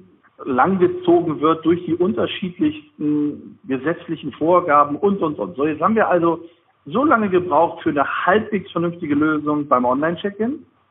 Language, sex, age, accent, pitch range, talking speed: German, male, 60-79, German, 145-200 Hz, 140 wpm